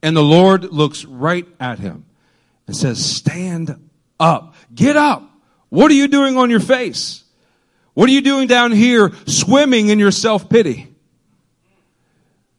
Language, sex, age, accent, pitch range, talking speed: English, male, 40-59, American, 175-225 Hz, 145 wpm